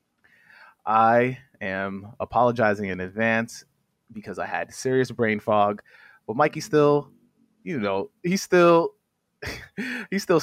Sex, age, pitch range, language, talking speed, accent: male, 20-39, 105-135 Hz, English, 110 wpm, American